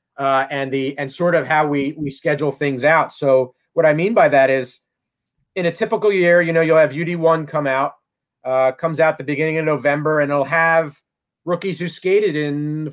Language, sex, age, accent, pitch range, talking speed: English, male, 30-49, American, 140-165 Hz, 210 wpm